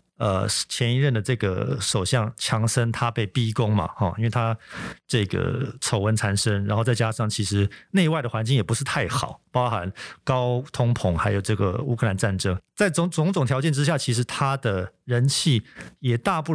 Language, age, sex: Chinese, 50-69, male